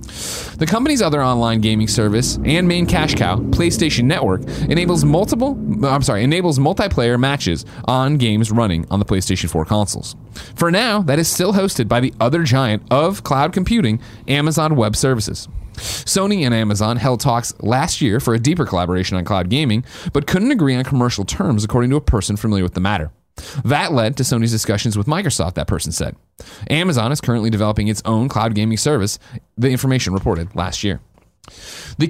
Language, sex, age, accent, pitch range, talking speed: English, male, 30-49, American, 105-145 Hz, 180 wpm